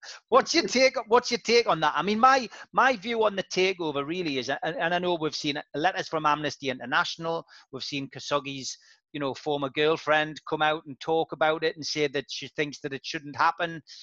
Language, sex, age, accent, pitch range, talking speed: English, male, 30-49, British, 145-190 Hz, 215 wpm